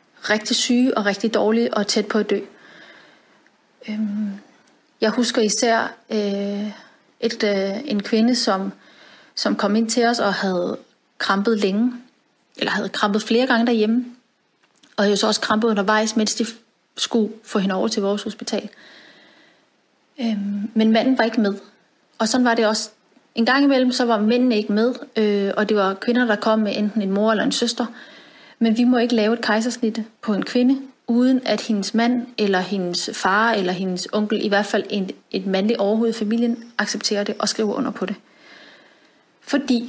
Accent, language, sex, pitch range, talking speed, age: native, Danish, female, 200-230 Hz, 175 wpm, 30-49